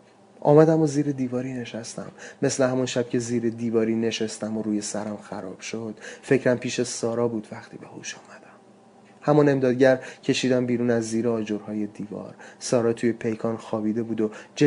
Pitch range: 115-150 Hz